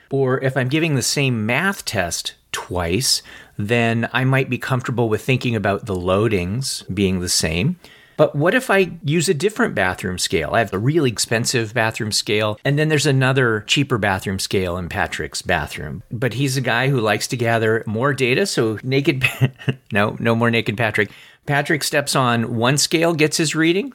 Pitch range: 115-155 Hz